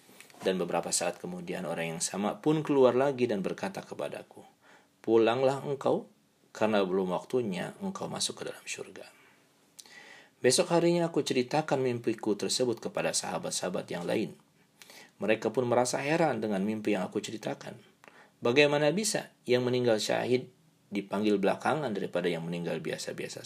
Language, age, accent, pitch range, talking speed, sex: Indonesian, 40-59, native, 105-145 Hz, 135 wpm, male